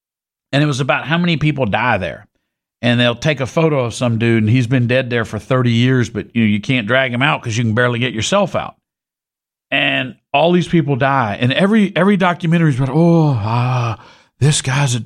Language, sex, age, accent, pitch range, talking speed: English, male, 50-69, American, 120-200 Hz, 225 wpm